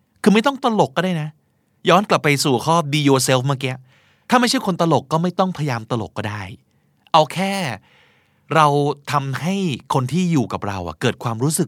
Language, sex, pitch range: Thai, male, 120-165 Hz